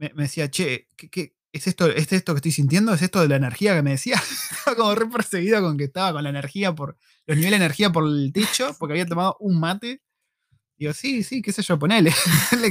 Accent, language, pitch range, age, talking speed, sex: Argentinian, Spanish, 145-185 Hz, 20-39, 240 wpm, male